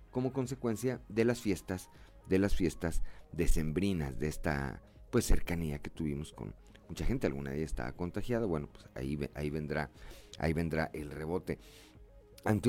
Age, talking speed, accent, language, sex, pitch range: 40-59, 155 wpm, Mexican, Spanish, male, 85-110 Hz